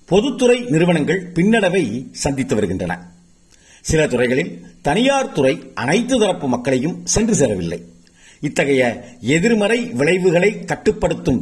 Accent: native